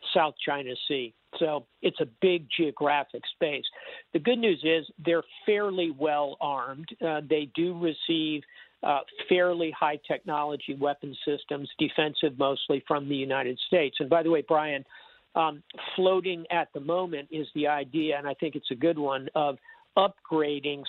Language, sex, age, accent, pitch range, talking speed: English, male, 50-69, American, 145-165 Hz, 160 wpm